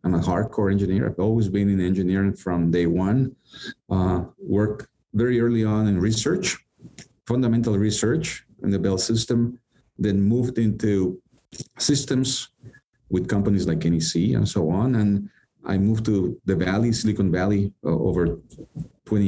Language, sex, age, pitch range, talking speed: English, male, 50-69, 100-120 Hz, 145 wpm